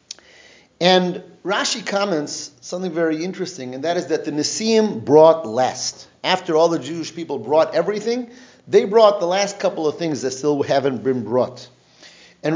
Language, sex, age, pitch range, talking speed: English, male, 40-59, 145-200 Hz, 160 wpm